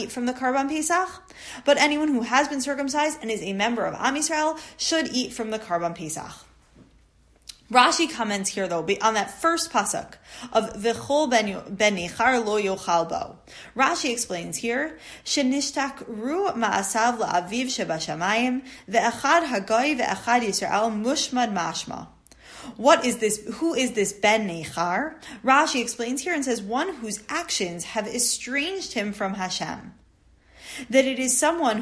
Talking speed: 140 wpm